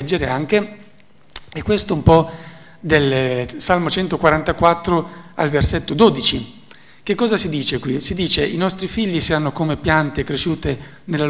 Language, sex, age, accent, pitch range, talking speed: Italian, male, 50-69, native, 150-190 Hz, 145 wpm